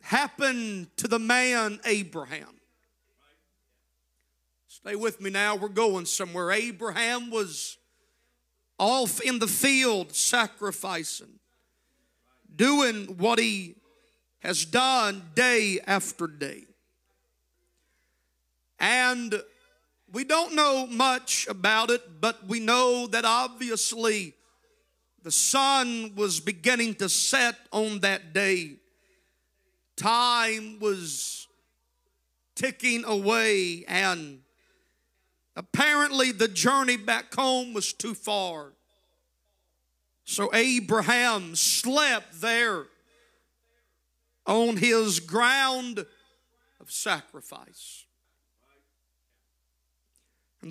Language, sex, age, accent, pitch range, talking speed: English, male, 40-59, American, 170-245 Hz, 85 wpm